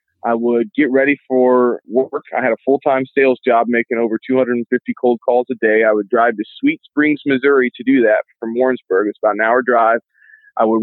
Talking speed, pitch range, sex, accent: 210 wpm, 115-140 Hz, male, American